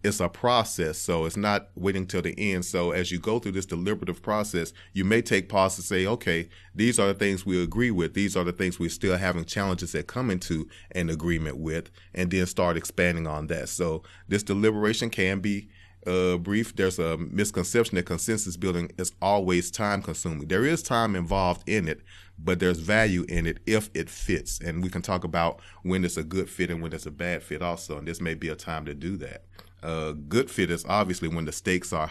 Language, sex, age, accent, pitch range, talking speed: English, male, 30-49, American, 85-95 Hz, 220 wpm